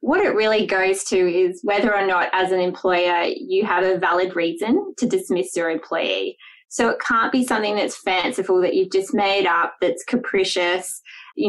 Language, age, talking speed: English, 20-39, 190 wpm